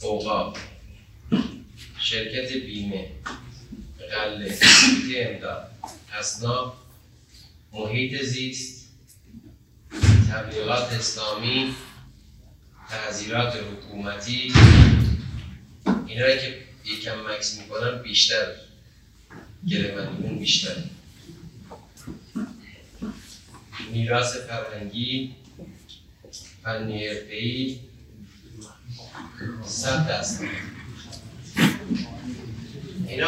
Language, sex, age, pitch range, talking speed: Persian, male, 30-49, 105-130 Hz, 45 wpm